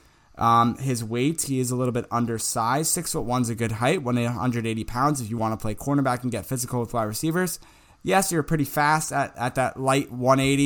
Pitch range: 110-130 Hz